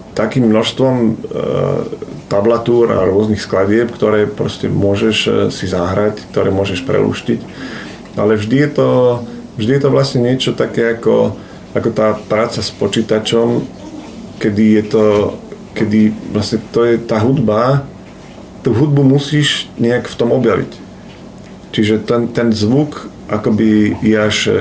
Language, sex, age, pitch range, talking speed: Czech, male, 30-49, 105-120 Hz, 135 wpm